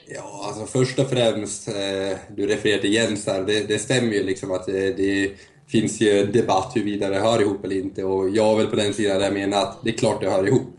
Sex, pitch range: male, 95-115 Hz